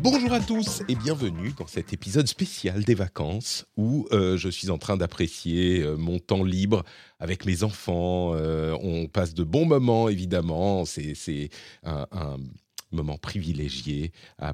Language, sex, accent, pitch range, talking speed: French, male, French, 90-135 Hz, 160 wpm